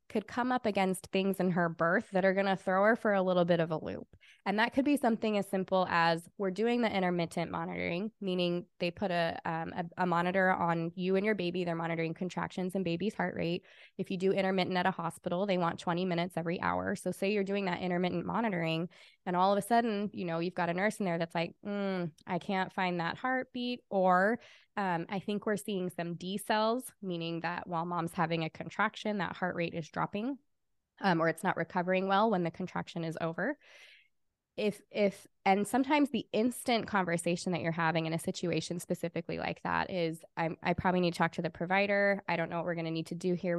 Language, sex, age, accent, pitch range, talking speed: English, female, 20-39, American, 170-200 Hz, 225 wpm